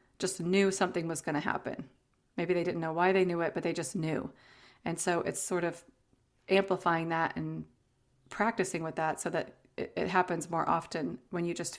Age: 30-49